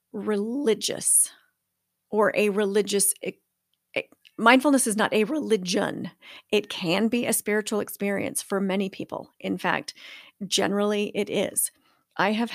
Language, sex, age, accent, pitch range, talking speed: English, female, 40-59, American, 200-230 Hz, 120 wpm